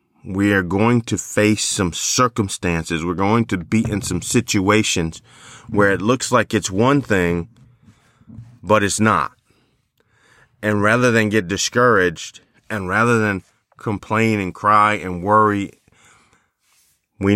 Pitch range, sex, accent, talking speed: 90-110 Hz, male, American, 130 wpm